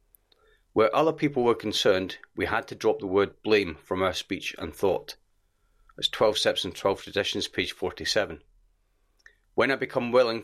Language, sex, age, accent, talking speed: English, male, 40-59, British, 165 wpm